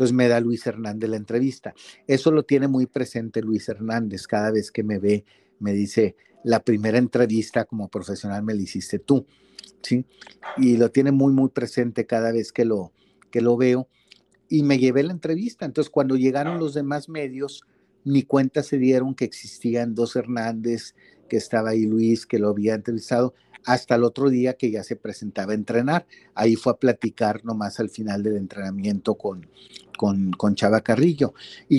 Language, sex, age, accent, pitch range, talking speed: Spanish, male, 40-59, Mexican, 110-130 Hz, 180 wpm